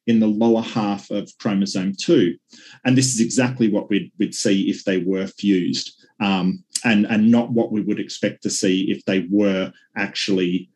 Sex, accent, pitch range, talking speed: male, Australian, 95-125 Hz, 185 wpm